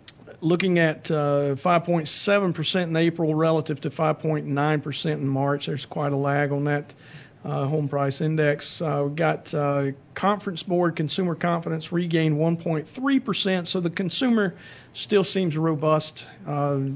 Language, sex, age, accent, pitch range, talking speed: English, male, 50-69, American, 145-170 Hz, 130 wpm